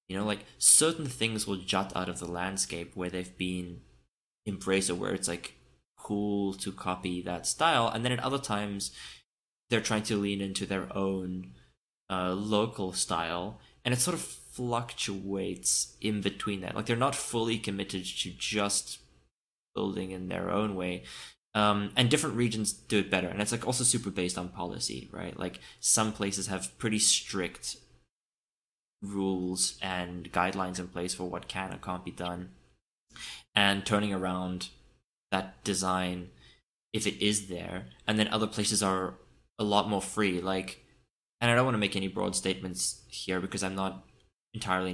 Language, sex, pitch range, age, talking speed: English, male, 90-105 Hz, 20-39, 170 wpm